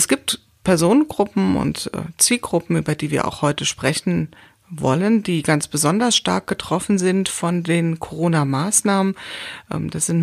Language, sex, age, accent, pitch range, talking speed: German, female, 40-59, German, 155-195 Hz, 135 wpm